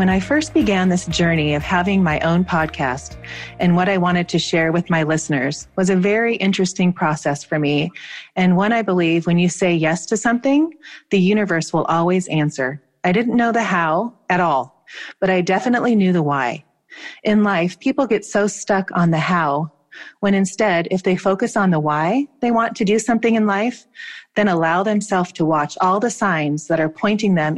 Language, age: English, 30-49